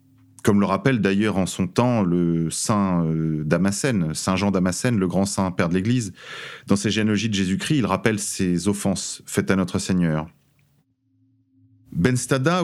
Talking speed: 155 wpm